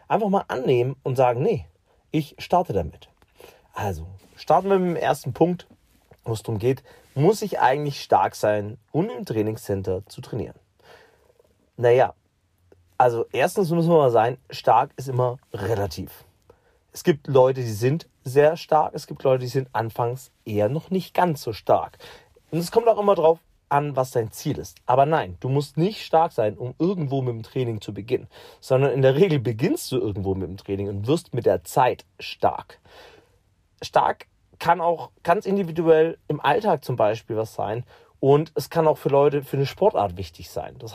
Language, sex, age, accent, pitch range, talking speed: German, male, 40-59, German, 110-155 Hz, 180 wpm